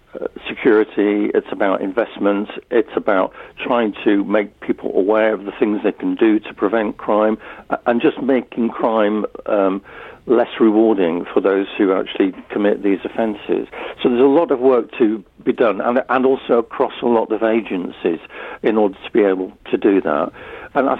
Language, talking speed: English, 175 wpm